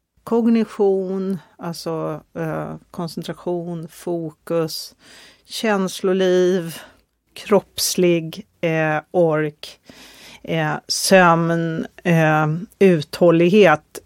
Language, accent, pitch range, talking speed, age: Swedish, native, 165-195 Hz, 55 wpm, 40-59